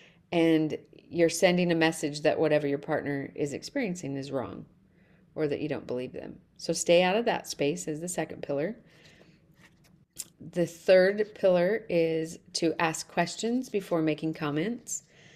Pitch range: 155-180 Hz